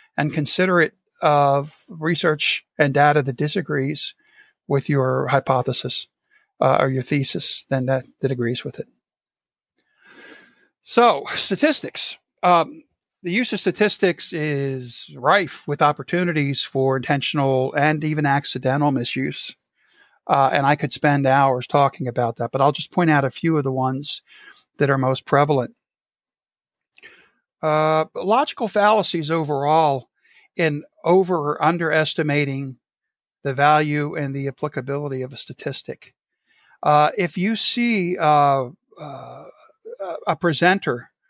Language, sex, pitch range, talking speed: English, male, 140-175 Hz, 125 wpm